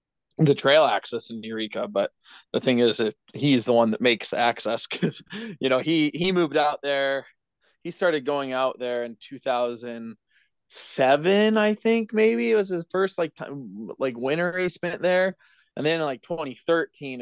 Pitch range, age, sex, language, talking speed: 115-150 Hz, 20-39, male, English, 175 wpm